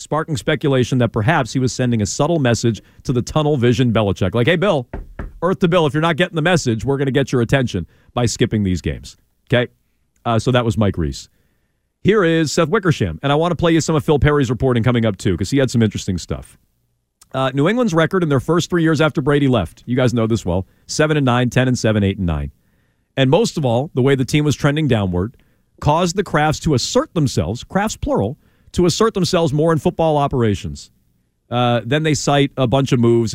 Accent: American